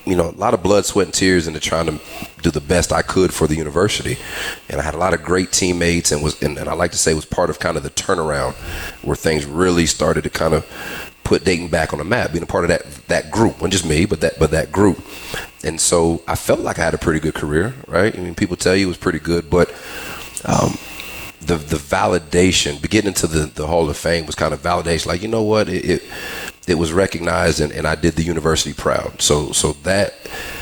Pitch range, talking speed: 75-90 Hz, 250 wpm